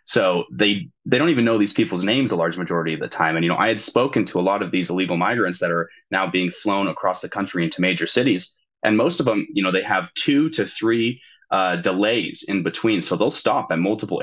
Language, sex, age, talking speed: English, male, 20-39, 250 wpm